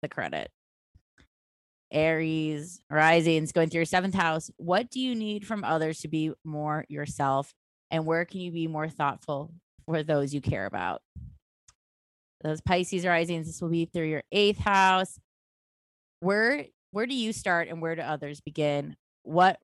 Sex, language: female, English